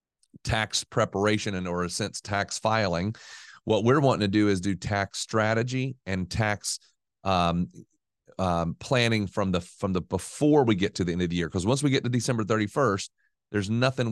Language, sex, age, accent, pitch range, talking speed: English, male, 40-59, American, 95-115 Hz, 190 wpm